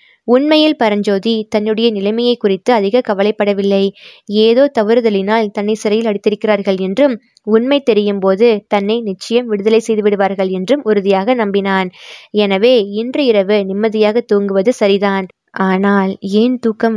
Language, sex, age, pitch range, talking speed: Tamil, female, 20-39, 195-225 Hz, 115 wpm